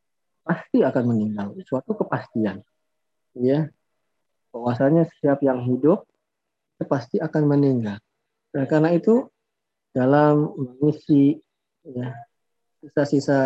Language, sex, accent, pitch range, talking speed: Indonesian, male, native, 130-170 Hz, 90 wpm